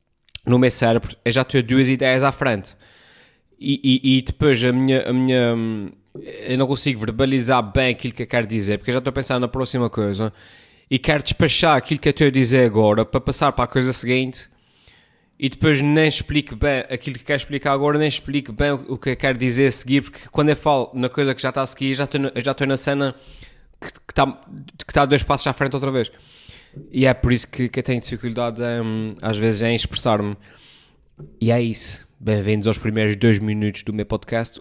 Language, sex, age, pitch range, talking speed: Portuguese, male, 20-39, 110-135 Hz, 225 wpm